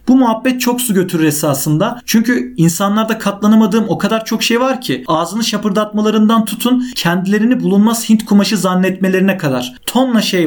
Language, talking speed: Turkish, 150 wpm